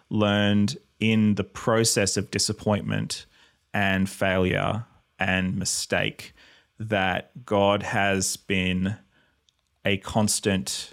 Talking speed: 90 wpm